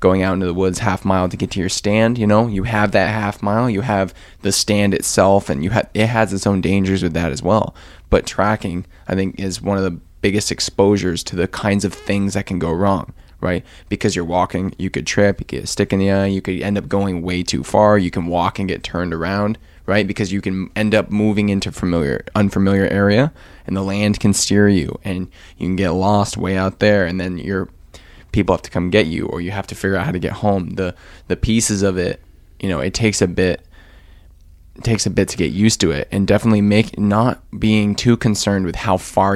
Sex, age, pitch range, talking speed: male, 20-39, 90-105 Hz, 240 wpm